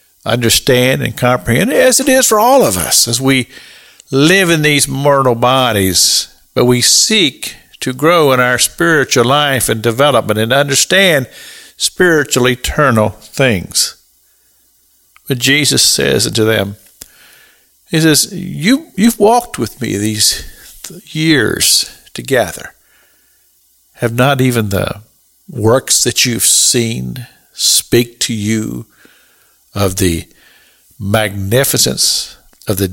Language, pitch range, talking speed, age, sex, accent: English, 105-145 Hz, 115 wpm, 50-69, male, American